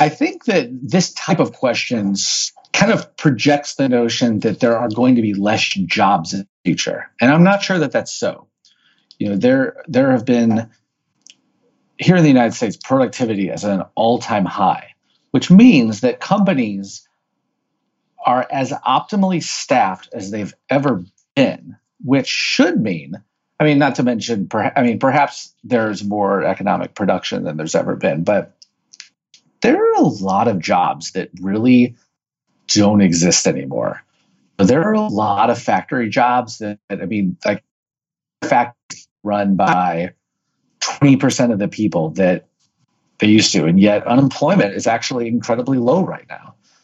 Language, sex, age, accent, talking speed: English, male, 40-59, American, 160 wpm